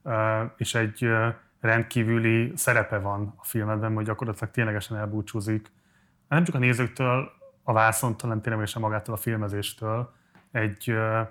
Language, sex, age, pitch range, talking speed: Hungarian, male, 20-39, 110-120 Hz, 120 wpm